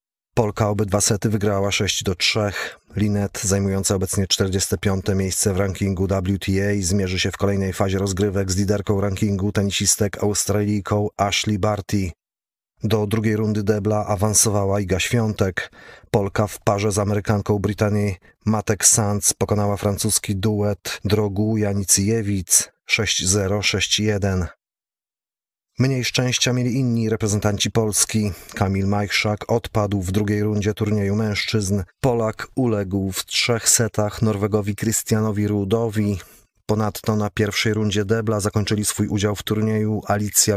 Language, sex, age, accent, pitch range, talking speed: Polish, male, 30-49, native, 100-110 Hz, 120 wpm